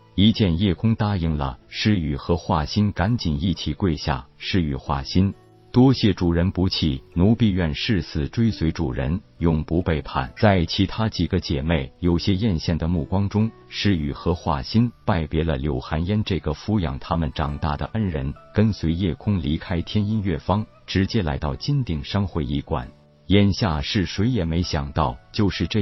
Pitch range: 75-100 Hz